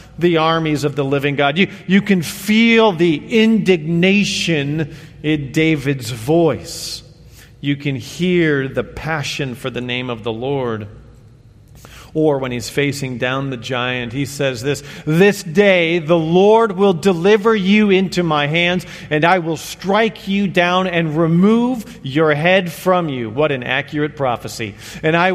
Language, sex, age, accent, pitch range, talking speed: English, male, 40-59, American, 130-175 Hz, 150 wpm